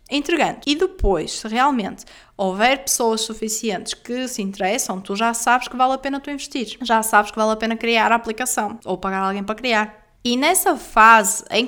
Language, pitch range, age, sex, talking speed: Portuguese, 215-275 Hz, 20-39, female, 190 wpm